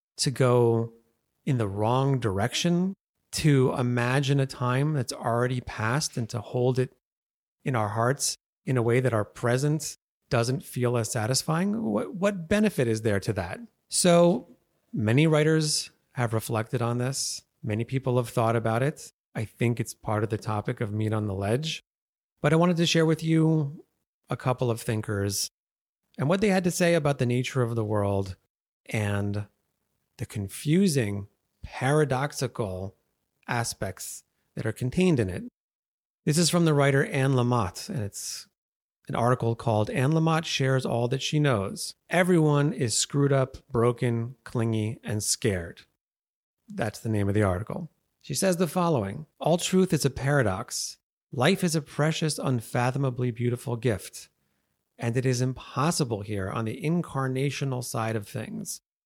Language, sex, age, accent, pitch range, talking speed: English, male, 30-49, American, 115-150 Hz, 155 wpm